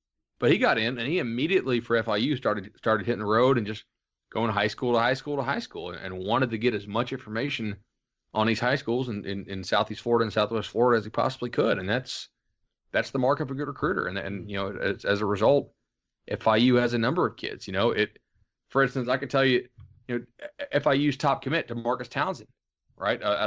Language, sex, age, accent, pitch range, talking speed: English, male, 30-49, American, 100-125 Hz, 230 wpm